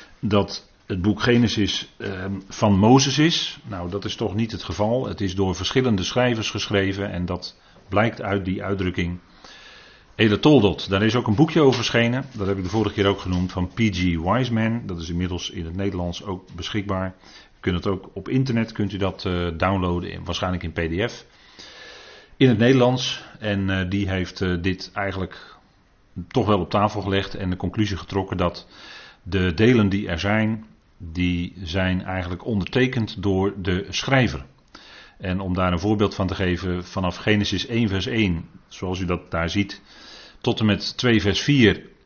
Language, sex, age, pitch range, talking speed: Dutch, male, 40-59, 90-110 Hz, 175 wpm